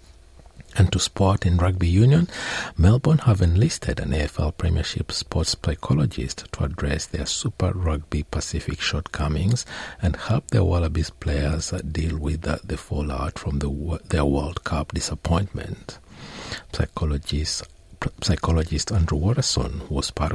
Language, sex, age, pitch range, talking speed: English, male, 60-79, 70-95 Hz, 125 wpm